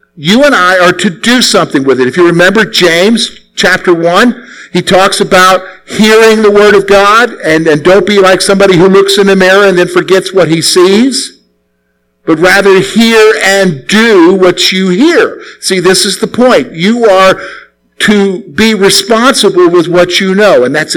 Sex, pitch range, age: male, 145-220 Hz, 50-69